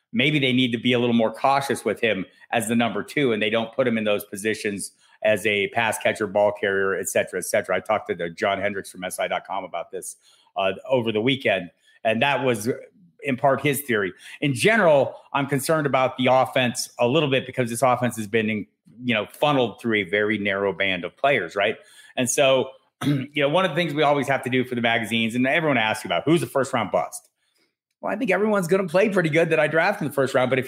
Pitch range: 110-140 Hz